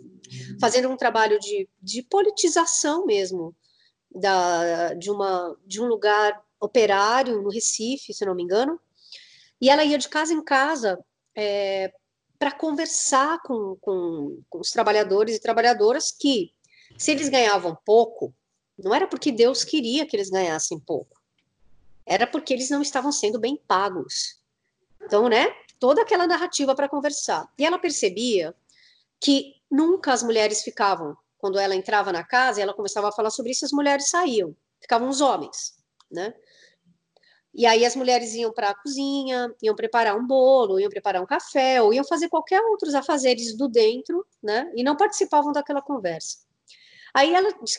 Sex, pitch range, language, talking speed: female, 210-300 Hz, Portuguese, 150 wpm